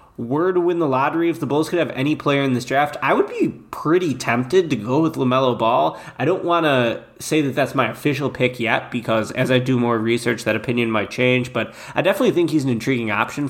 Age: 20-39